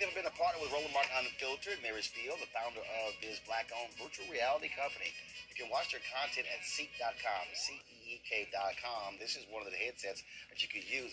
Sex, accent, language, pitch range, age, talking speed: male, American, English, 120-155 Hz, 30-49, 195 wpm